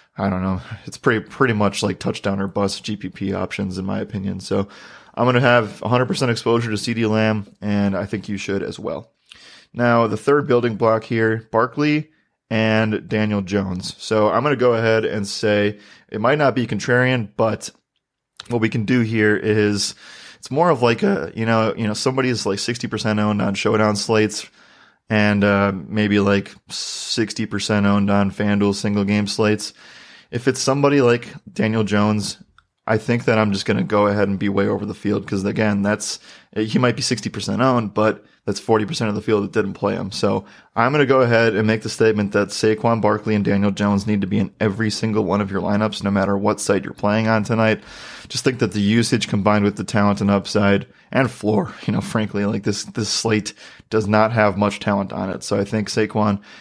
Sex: male